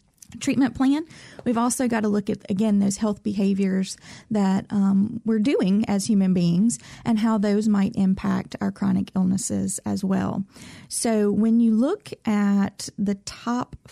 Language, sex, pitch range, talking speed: English, female, 195-225 Hz, 155 wpm